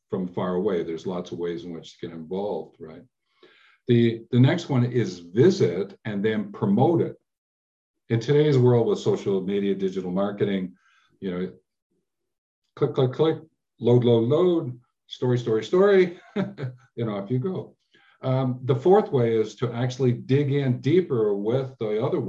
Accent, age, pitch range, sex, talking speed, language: American, 50-69, 95-130 Hz, male, 160 wpm, English